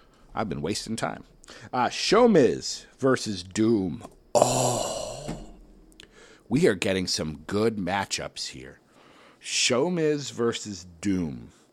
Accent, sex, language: American, male, English